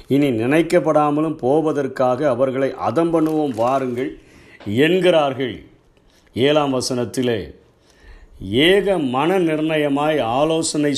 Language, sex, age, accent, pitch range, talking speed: Tamil, male, 50-69, native, 130-155 Hz, 75 wpm